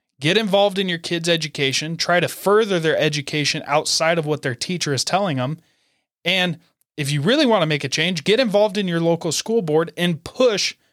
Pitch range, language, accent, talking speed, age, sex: 140-180 Hz, English, American, 205 wpm, 30-49, male